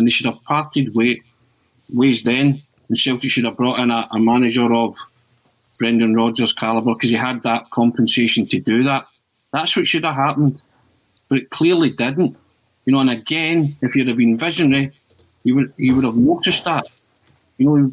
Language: English